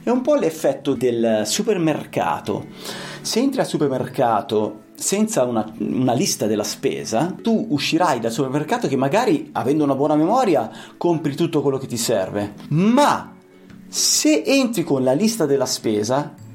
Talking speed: 145 wpm